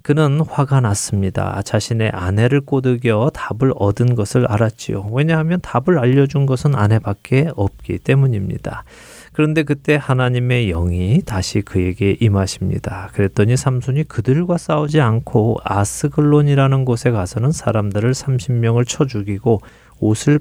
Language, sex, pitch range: Korean, male, 105-135 Hz